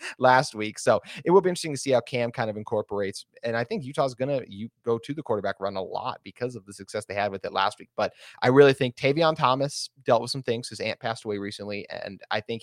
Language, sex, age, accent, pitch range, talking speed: English, male, 30-49, American, 105-125 Hz, 260 wpm